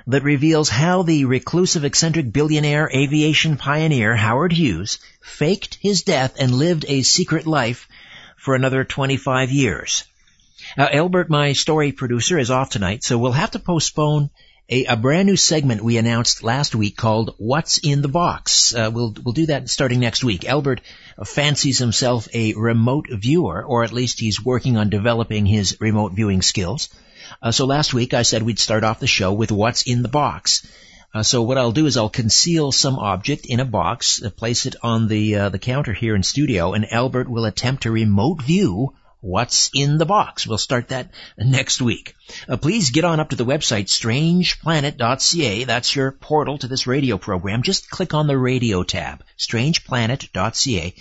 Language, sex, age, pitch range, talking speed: English, male, 50-69, 115-145 Hz, 180 wpm